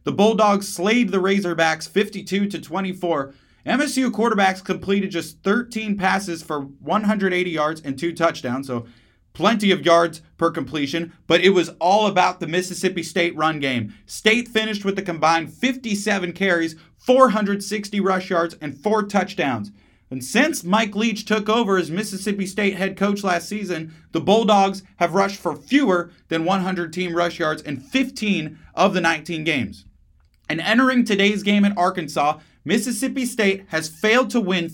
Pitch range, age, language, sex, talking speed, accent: 165-210 Hz, 30-49, English, male, 155 wpm, American